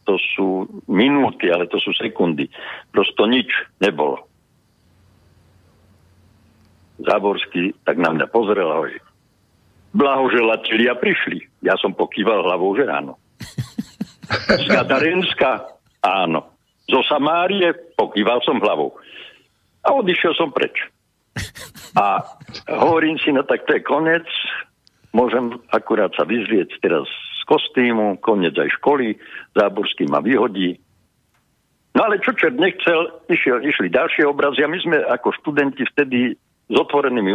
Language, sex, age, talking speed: Slovak, male, 60-79, 120 wpm